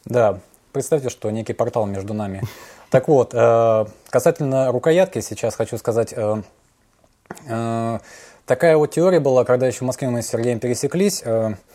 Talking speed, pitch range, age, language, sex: 135 wpm, 110-140 Hz, 20-39, Russian, male